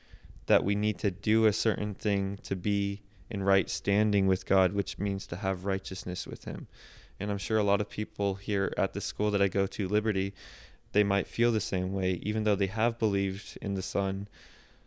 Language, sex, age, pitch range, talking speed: English, male, 20-39, 95-105 Hz, 210 wpm